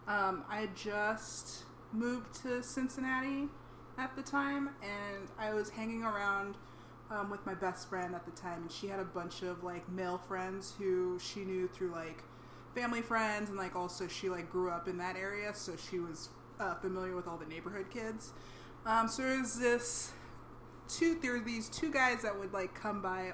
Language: English